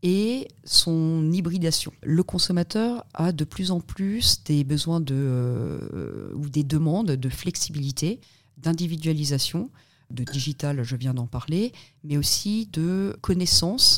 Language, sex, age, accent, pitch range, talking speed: French, female, 40-59, French, 130-165 Hz, 130 wpm